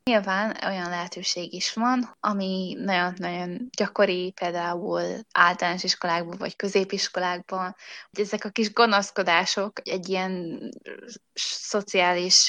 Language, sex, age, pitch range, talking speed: Hungarian, female, 20-39, 175-200 Hz, 100 wpm